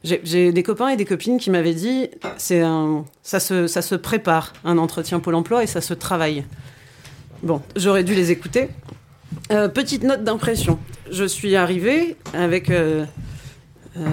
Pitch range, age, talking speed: 155-195 Hz, 40-59, 170 wpm